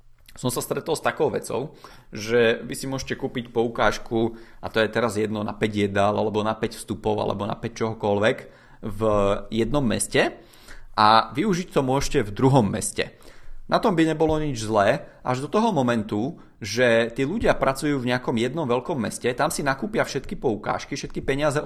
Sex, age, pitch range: male, 30-49, 110-135 Hz